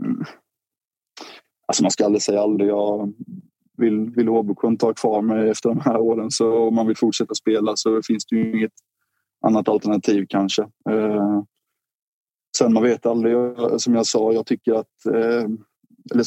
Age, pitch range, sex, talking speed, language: 20-39, 105-110 Hz, male, 165 wpm, Swedish